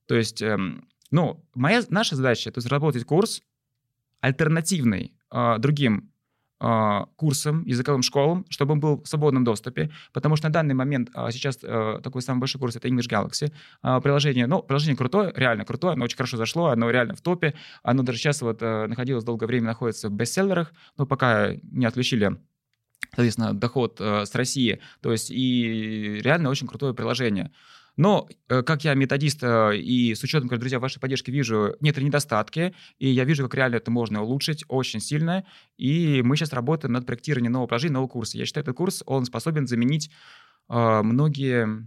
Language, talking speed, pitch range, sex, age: Russian, 165 wpm, 115-145 Hz, male, 20-39